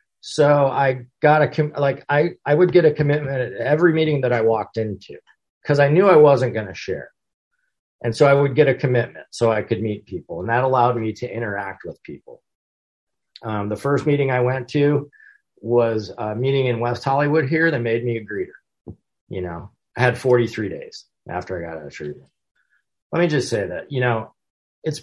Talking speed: 205 wpm